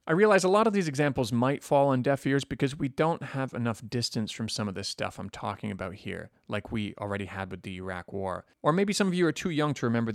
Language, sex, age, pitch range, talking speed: English, male, 30-49, 105-135 Hz, 265 wpm